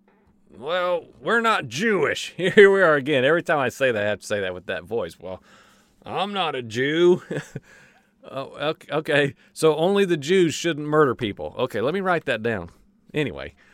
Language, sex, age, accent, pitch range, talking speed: English, male, 40-59, American, 130-185 Hz, 185 wpm